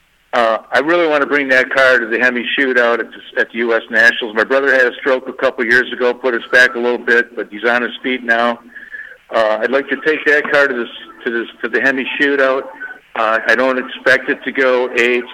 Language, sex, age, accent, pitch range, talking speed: English, male, 60-79, American, 115-135 Hz, 245 wpm